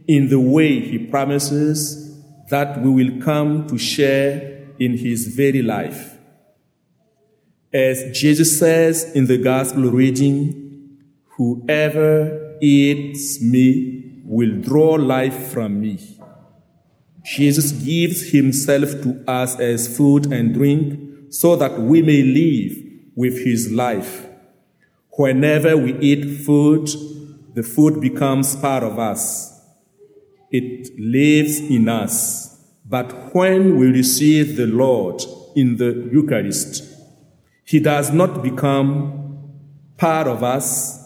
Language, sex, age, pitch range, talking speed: English, male, 50-69, 130-150 Hz, 115 wpm